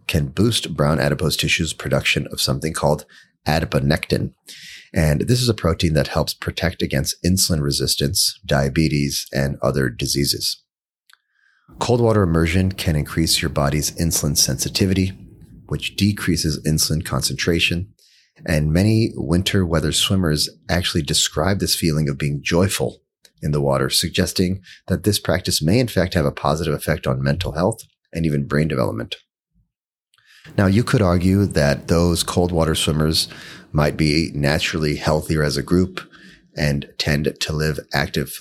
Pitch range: 75-95 Hz